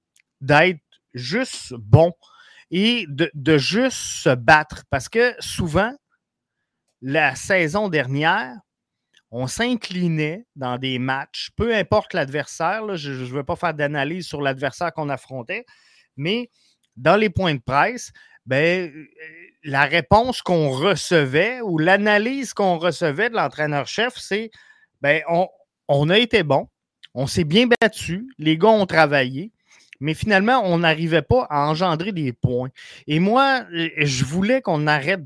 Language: French